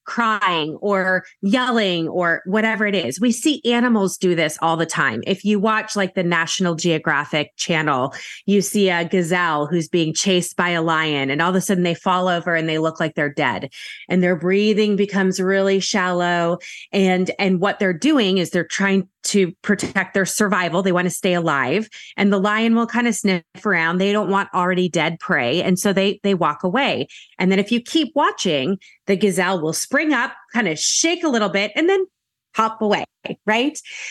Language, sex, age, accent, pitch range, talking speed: English, female, 30-49, American, 180-240 Hz, 195 wpm